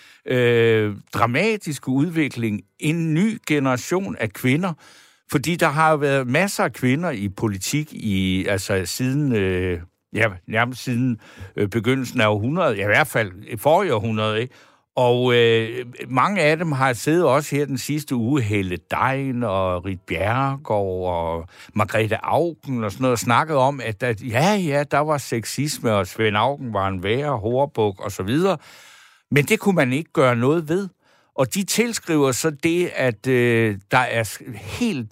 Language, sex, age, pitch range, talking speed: Danish, male, 60-79, 115-150 Hz, 165 wpm